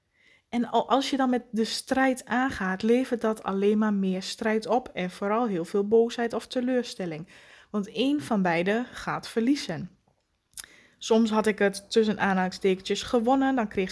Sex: female